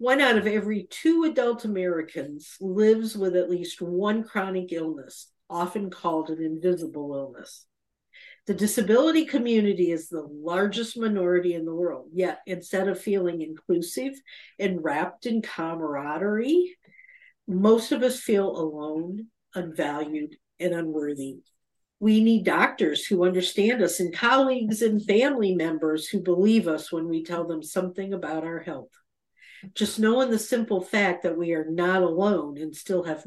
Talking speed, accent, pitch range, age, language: 145 wpm, American, 165-215 Hz, 50-69, English